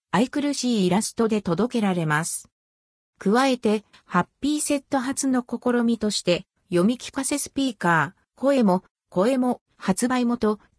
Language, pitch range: Japanese, 180-260 Hz